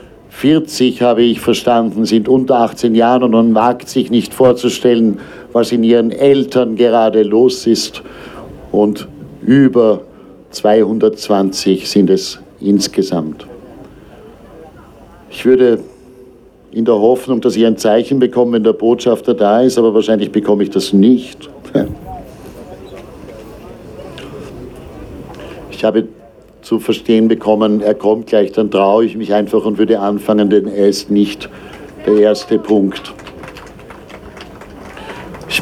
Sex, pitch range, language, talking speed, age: male, 110-125 Hz, German, 120 wpm, 60-79